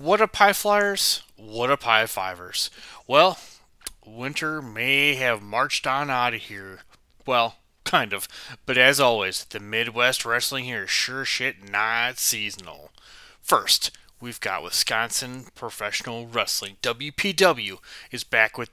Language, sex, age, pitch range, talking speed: English, male, 20-39, 115-140 Hz, 135 wpm